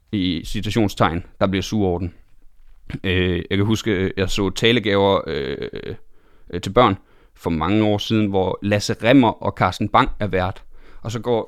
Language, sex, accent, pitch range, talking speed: Danish, male, native, 105-135 Hz, 160 wpm